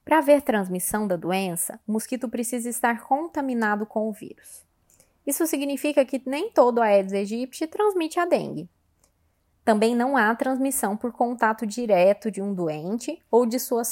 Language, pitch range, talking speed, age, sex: Portuguese, 190-280 Hz, 155 wpm, 20-39, female